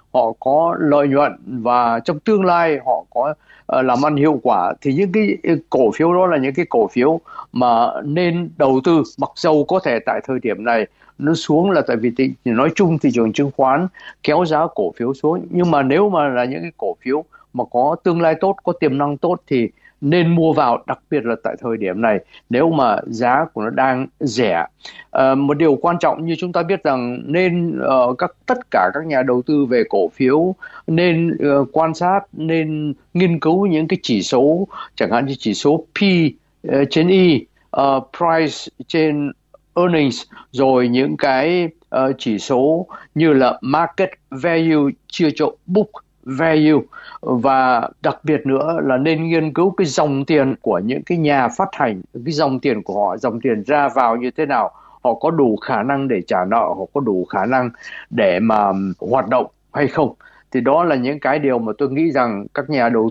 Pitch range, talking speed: 130-170 Hz, 200 wpm